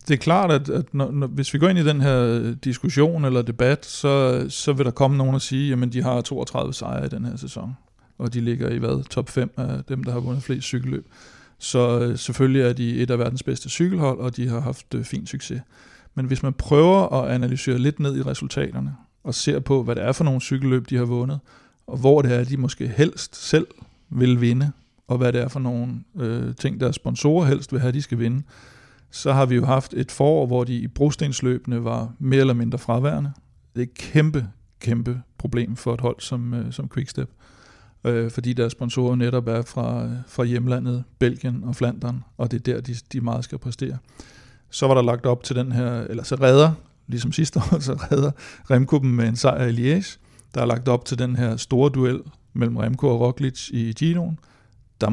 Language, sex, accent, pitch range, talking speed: Danish, male, native, 120-135 Hz, 210 wpm